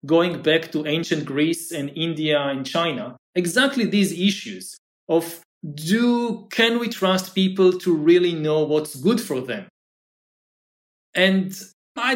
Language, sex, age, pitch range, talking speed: English, male, 40-59, 160-205 Hz, 135 wpm